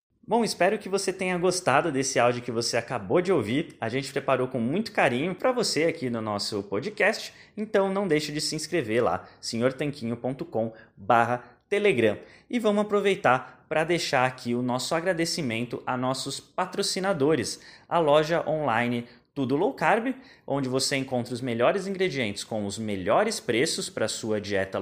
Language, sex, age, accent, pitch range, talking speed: Portuguese, male, 20-39, Brazilian, 120-175 Hz, 155 wpm